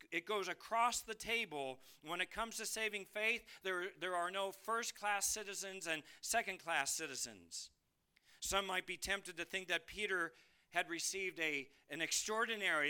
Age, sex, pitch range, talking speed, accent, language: 40-59, male, 155-225 Hz, 155 wpm, American, English